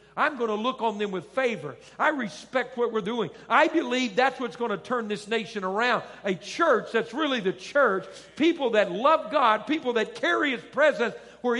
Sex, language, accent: male, English, American